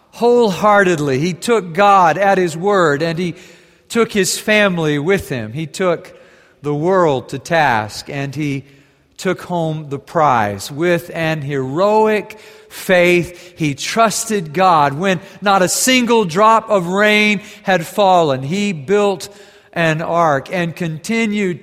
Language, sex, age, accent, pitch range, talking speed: English, male, 50-69, American, 155-195 Hz, 135 wpm